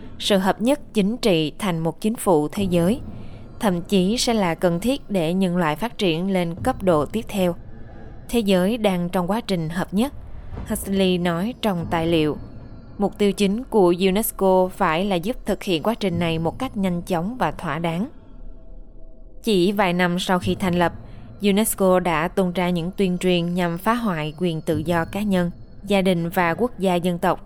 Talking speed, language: 195 wpm, Vietnamese